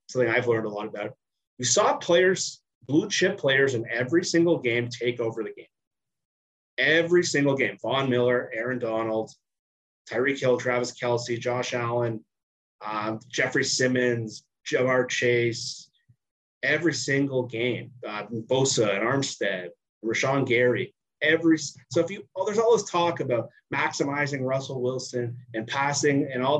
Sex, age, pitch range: male, 30-49, 120-155 Hz